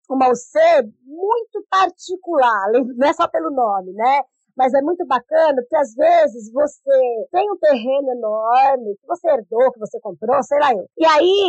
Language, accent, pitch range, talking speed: Portuguese, Brazilian, 240-300 Hz, 165 wpm